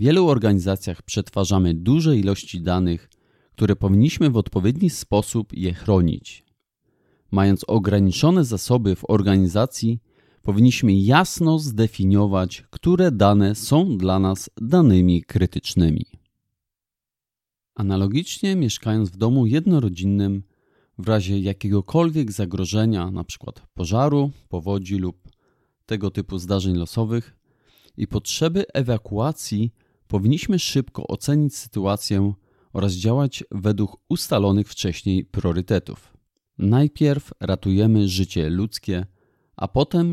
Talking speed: 95 wpm